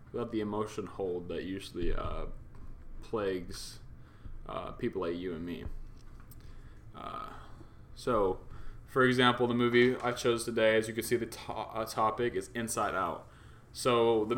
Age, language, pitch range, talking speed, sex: 20-39, English, 105-130 Hz, 145 wpm, male